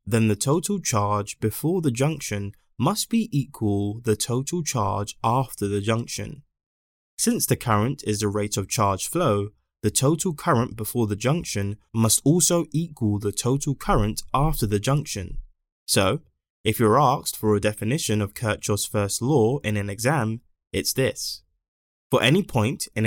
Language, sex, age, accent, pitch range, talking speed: English, male, 20-39, British, 105-135 Hz, 155 wpm